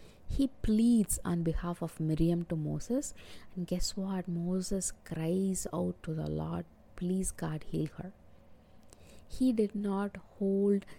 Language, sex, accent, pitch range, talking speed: English, female, Indian, 170-215 Hz, 135 wpm